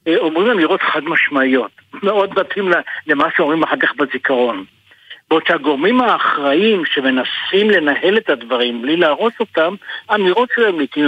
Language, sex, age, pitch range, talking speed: Hebrew, male, 60-79, 130-185 Hz, 130 wpm